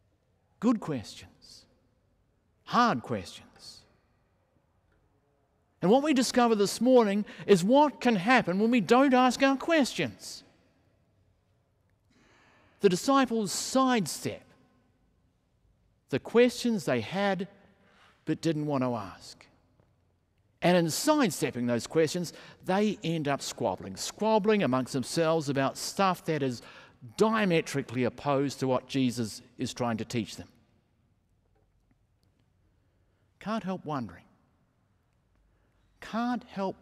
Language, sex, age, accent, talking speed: English, male, 50-69, Australian, 105 wpm